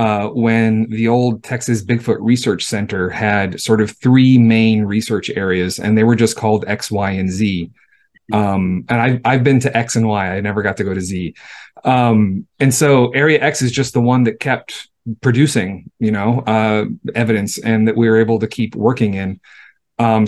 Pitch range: 105-130 Hz